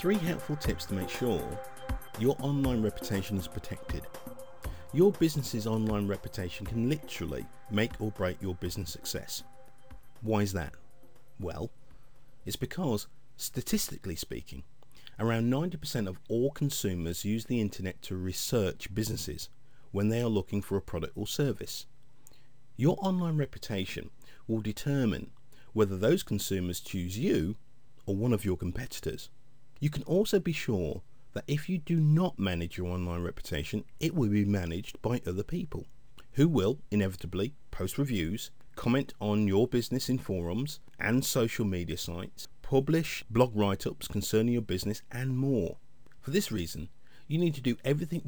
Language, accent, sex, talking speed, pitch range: English, British, male, 145 wpm, 100-135 Hz